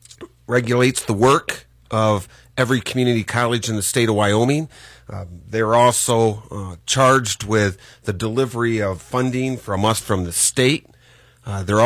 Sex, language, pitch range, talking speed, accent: male, English, 105-130 Hz, 145 wpm, American